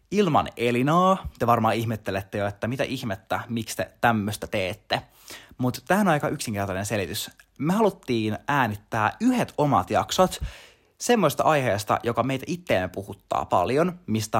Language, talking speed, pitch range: Finnish, 135 wpm, 105-140 Hz